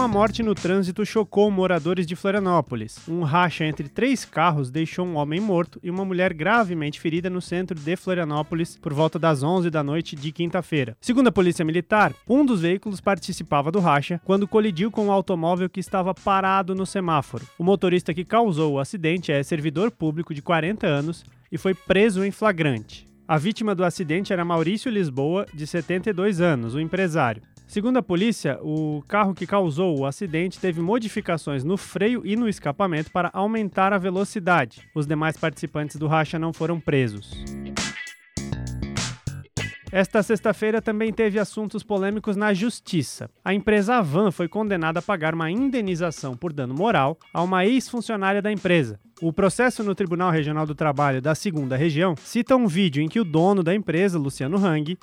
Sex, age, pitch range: male, 20-39, 160-205 Hz